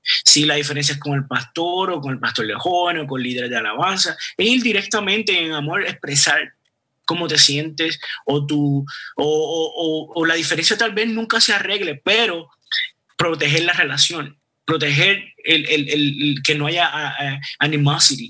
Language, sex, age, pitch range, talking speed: Spanish, male, 20-39, 145-185 Hz, 180 wpm